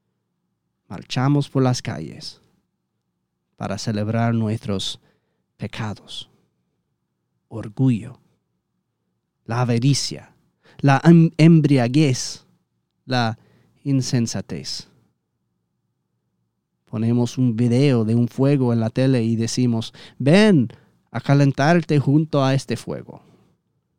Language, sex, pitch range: Spanish, male, 115-145 Hz